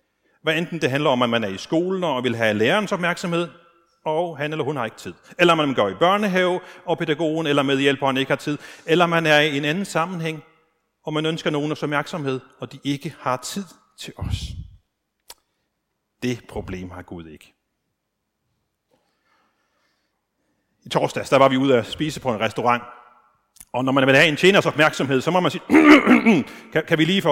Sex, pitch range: male, 125-180 Hz